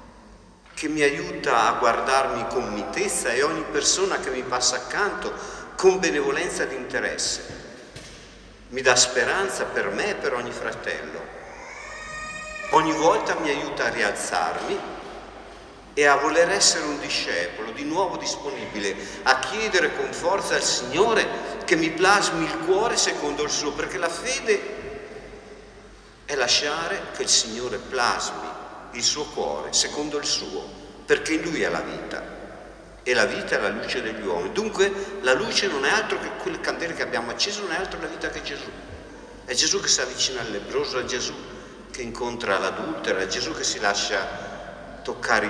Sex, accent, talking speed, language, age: male, native, 160 wpm, Italian, 50-69